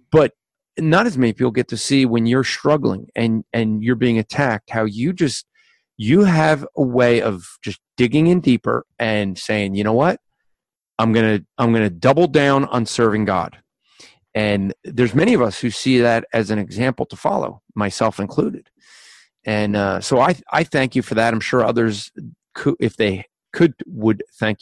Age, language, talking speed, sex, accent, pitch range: 40-59, English, 190 wpm, male, American, 105-130 Hz